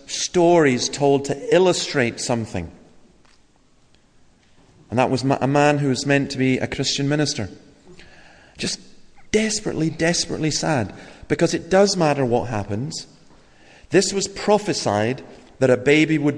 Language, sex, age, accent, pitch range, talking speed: English, male, 40-59, British, 110-145 Hz, 130 wpm